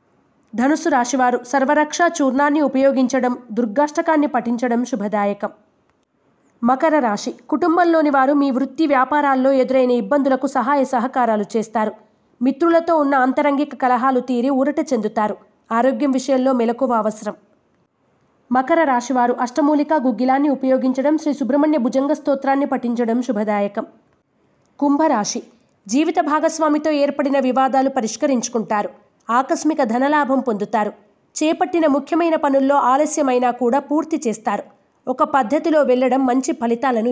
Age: 20-39